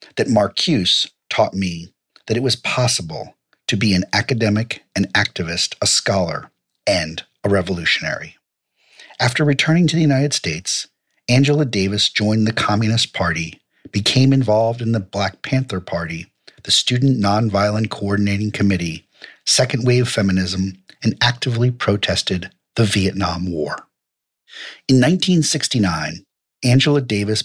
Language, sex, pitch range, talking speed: English, male, 100-130 Hz, 120 wpm